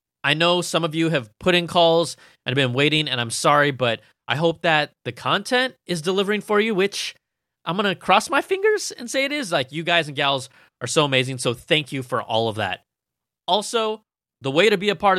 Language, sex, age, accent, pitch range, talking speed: English, male, 20-39, American, 130-175 Hz, 235 wpm